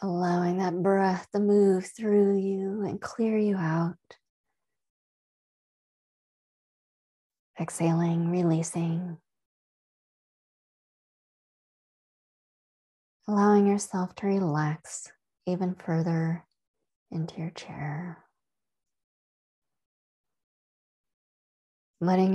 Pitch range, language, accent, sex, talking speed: 160-190 Hz, English, American, female, 60 wpm